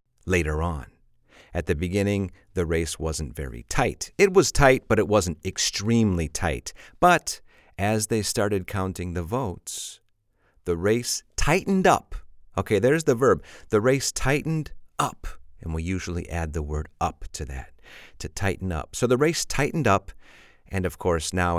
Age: 40-59